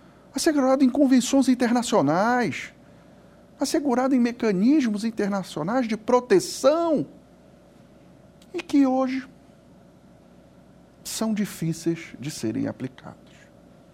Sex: male